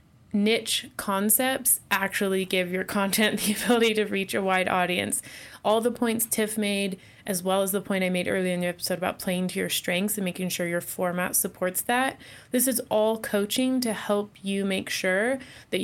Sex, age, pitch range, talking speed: female, 20-39, 190-225 Hz, 195 wpm